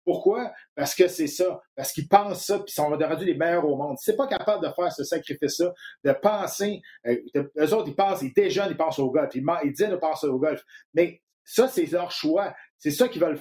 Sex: male